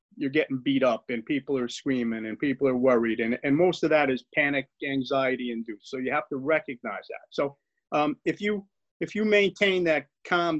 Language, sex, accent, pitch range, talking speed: English, male, American, 135-180 Hz, 205 wpm